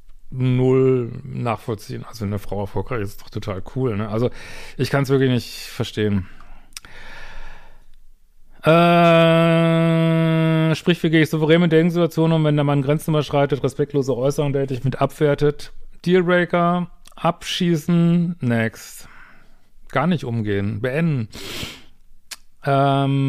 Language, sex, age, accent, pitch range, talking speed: German, male, 40-59, German, 125-160 Hz, 120 wpm